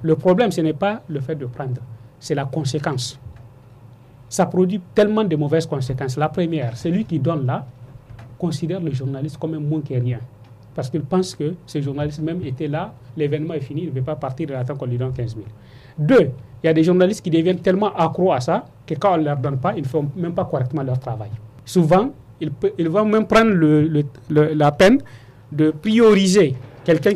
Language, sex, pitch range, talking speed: French, male, 130-175 Hz, 205 wpm